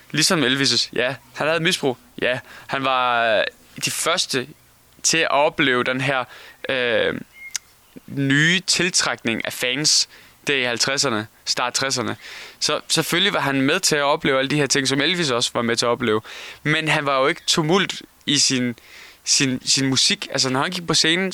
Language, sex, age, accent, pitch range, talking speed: Danish, male, 20-39, native, 130-165 Hz, 170 wpm